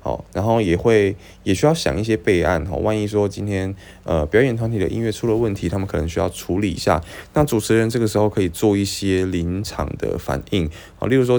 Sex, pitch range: male, 85-110 Hz